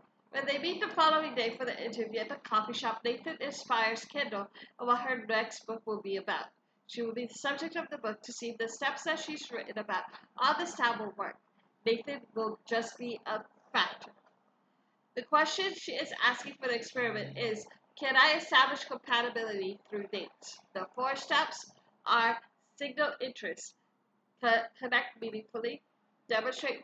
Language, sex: English, female